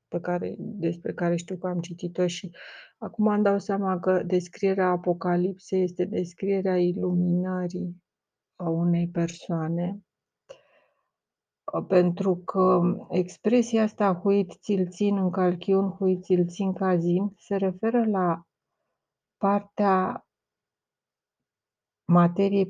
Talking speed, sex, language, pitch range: 105 wpm, female, Romanian, 175-200 Hz